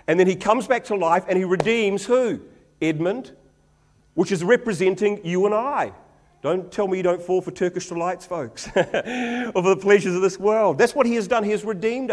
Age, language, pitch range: 50-69, English, 170-220 Hz